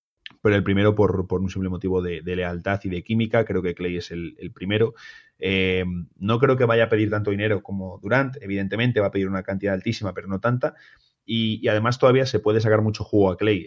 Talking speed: 235 wpm